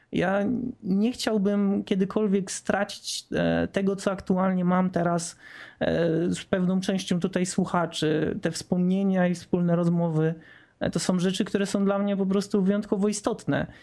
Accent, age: native, 20-39